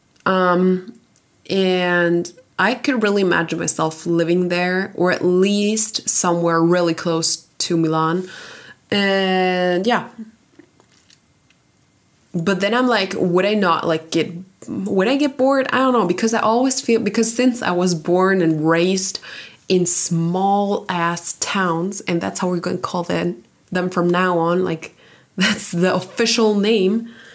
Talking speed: 145 wpm